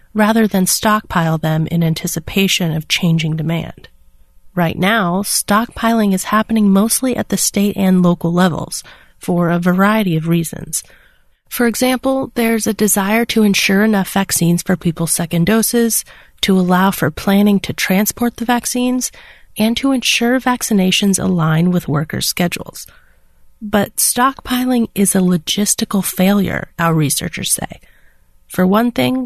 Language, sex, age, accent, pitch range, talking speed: English, female, 30-49, American, 170-220 Hz, 135 wpm